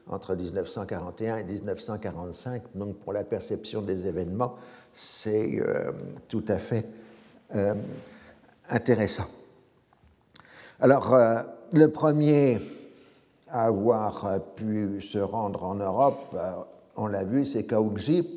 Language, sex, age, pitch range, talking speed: French, male, 60-79, 105-135 Hz, 110 wpm